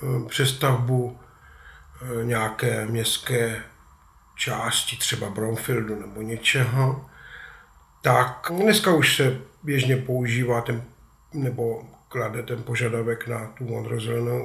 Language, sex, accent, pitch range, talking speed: Czech, male, native, 115-140 Hz, 90 wpm